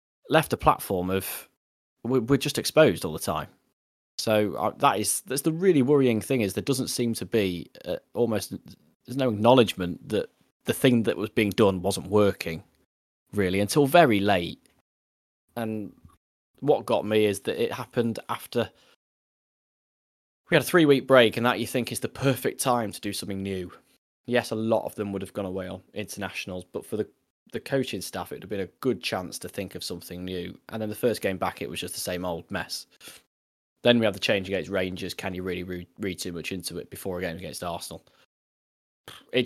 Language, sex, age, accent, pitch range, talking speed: English, male, 10-29, British, 90-120 Hz, 200 wpm